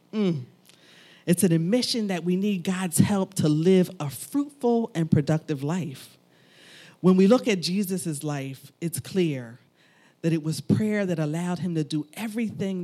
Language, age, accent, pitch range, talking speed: English, 40-59, American, 140-195 Hz, 160 wpm